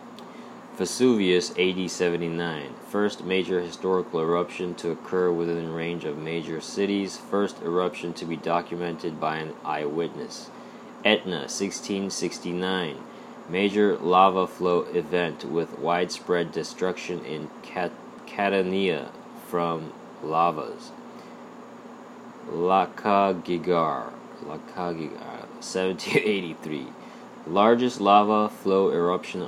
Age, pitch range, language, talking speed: 20-39, 85-95 Hz, English, 85 wpm